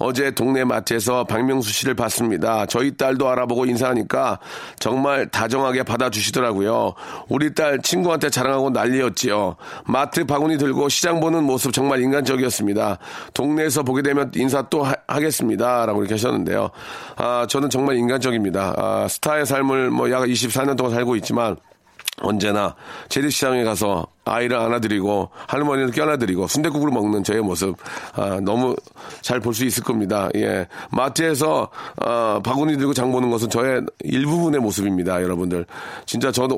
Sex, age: male, 40-59